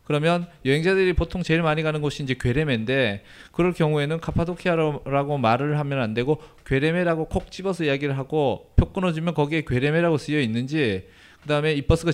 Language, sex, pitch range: Korean, male, 125-165 Hz